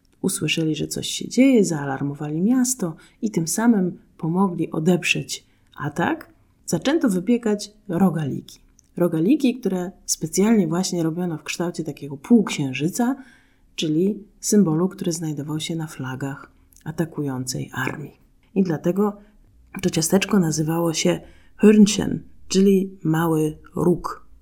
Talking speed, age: 110 wpm, 30-49